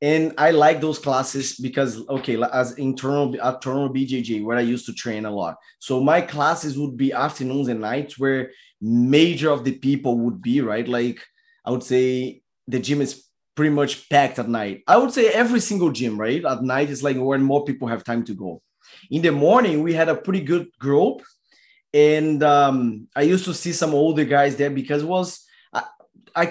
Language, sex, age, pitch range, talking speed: English, male, 20-39, 130-165 Hz, 200 wpm